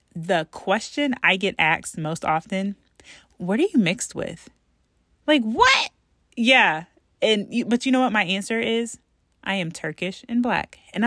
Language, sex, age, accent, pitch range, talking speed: English, female, 30-49, American, 180-260 Hz, 165 wpm